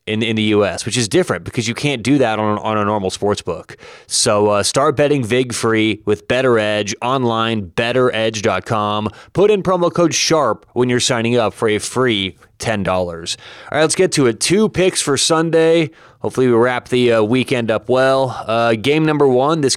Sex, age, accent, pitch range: male, 30-49, American, 110-135 Hz